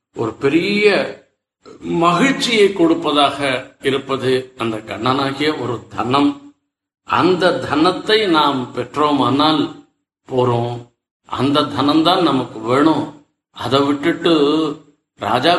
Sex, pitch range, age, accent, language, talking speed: male, 125-155 Hz, 50-69, native, Tamil, 80 wpm